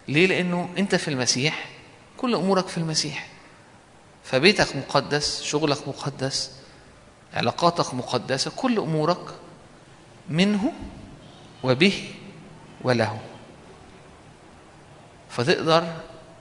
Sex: male